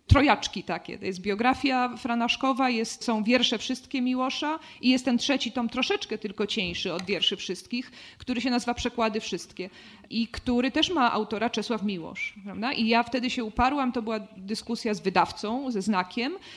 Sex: female